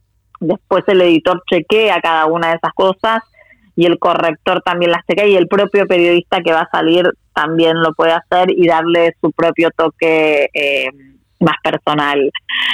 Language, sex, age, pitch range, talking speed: Spanish, female, 20-39, 165-210 Hz, 165 wpm